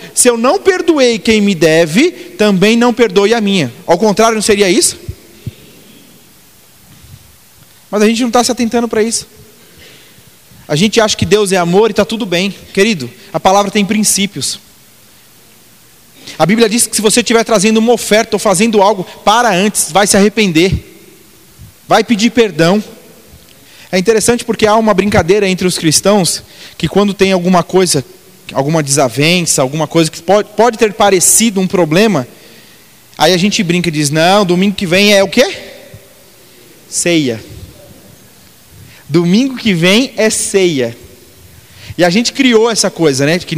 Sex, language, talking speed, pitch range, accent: male, Portuguese, 160 wpm, 165-225 Hz, Brazilian